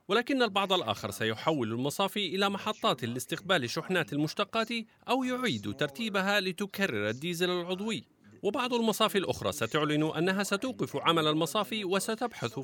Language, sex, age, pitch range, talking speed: Arabic, male, 40-59, 135-210 Hz, 120 wpm